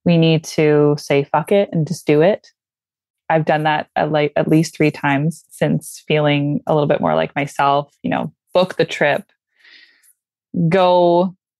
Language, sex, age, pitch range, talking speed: English, female, 20-39, 145-165 Hz, 160 wpm